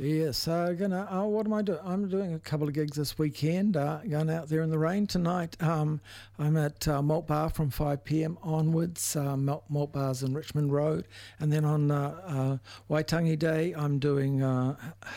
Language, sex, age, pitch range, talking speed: English, male, 60-79, 135-160 Hz, 195 wpm